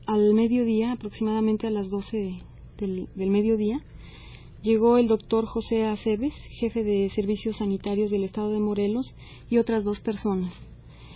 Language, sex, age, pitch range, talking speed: Spanish, female, 30-49, 200-225 Hz, 140 wpm